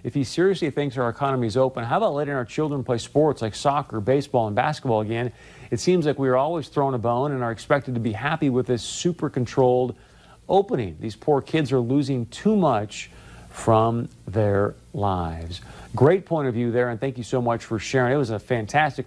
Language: English